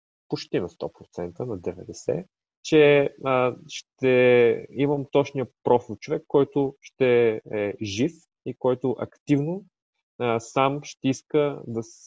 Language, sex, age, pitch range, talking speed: Bulgarian, male, 30-49, 105-130 Hz, 120 wpm